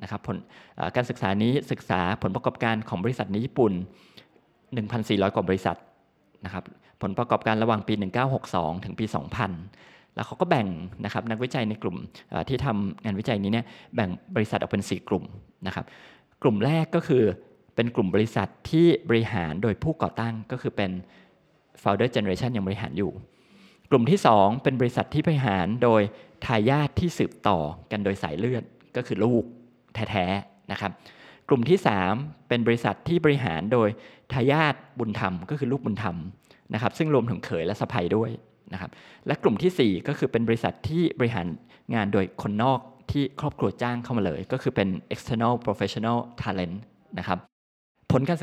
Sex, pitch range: male, 100-130 Hz